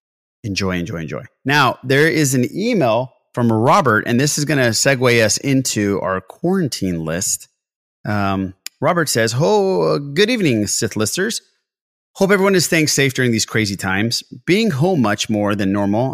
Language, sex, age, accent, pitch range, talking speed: English, male, 30-49, American, 105-135 Hz, 165 wpm